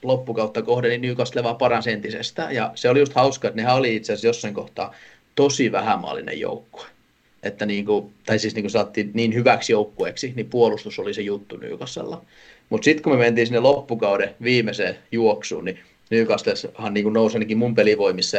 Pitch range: 105-155 Hz